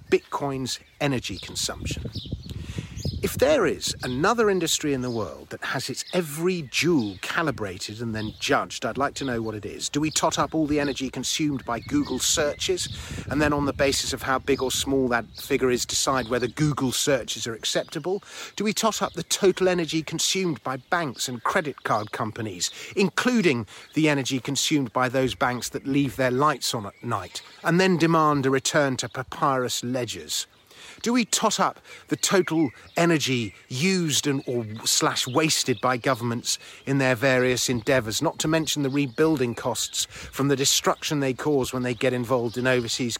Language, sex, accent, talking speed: English, male, British, 180 wpm